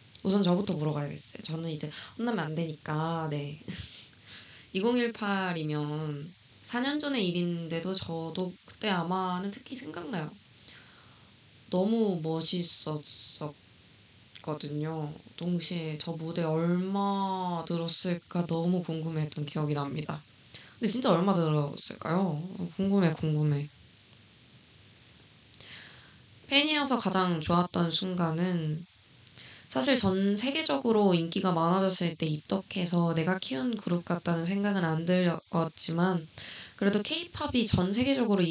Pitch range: 160-200 Hz